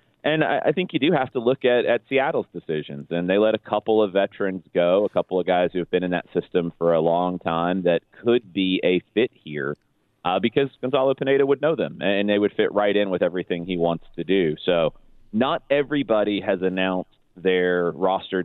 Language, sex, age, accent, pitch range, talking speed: English, male, 30-49, American, 85-110 Hz, 215 wpm